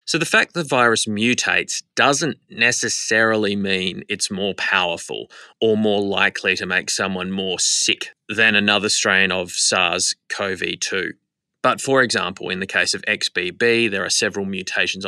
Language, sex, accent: English, male, Australian